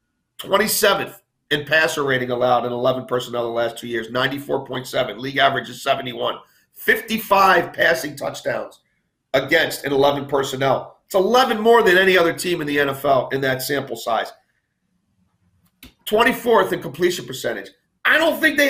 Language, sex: English, male